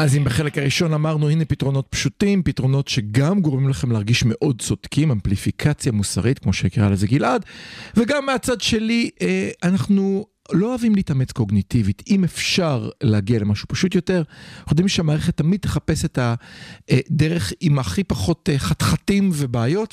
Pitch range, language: 120-175 Hz, Hebrew